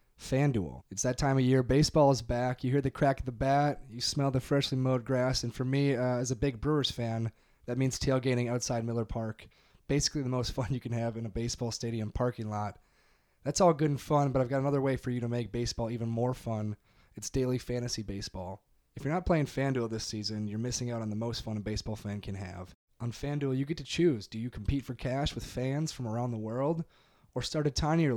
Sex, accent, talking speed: male, American, 240 wpm